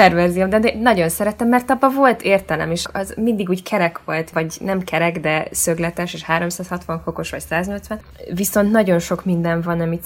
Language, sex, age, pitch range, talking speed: Hungarian, female, 20-39, 160-185 Hz, 175 wpm